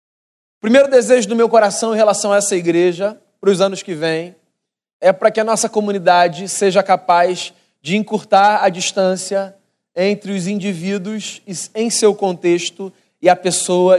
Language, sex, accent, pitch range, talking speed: Portuguese, male, Brazilian, 180-220 Hz, 160 wpm